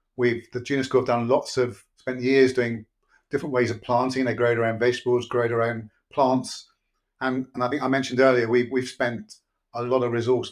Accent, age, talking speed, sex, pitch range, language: British, 30-49, 215 wpm, male, 110-125 Hz, English